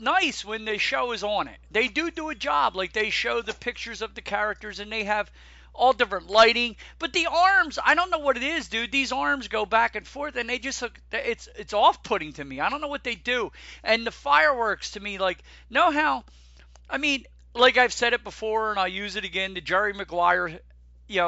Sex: male